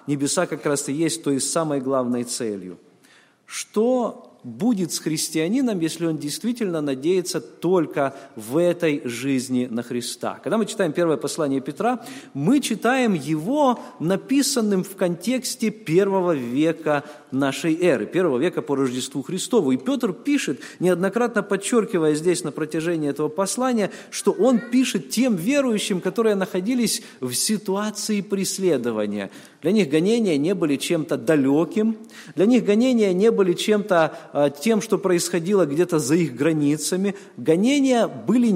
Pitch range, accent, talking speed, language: 145-210 Hz, native, 135 wpm, Russian